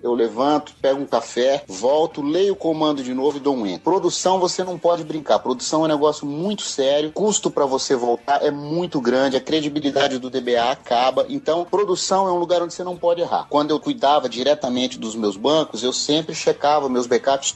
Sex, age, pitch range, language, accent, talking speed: male, 30-49, 130-170 Hz, English, Brazilian, 210 wpm